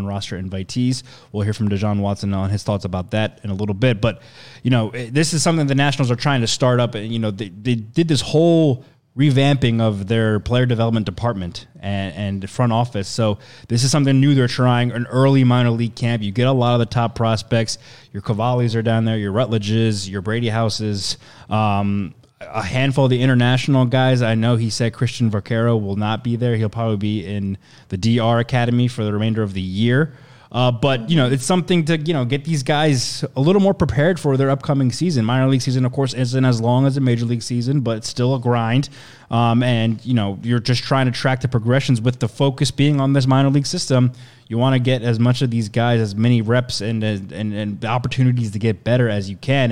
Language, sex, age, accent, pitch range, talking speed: English, male, 20-39, American, 110-130 Hz, 225 wpm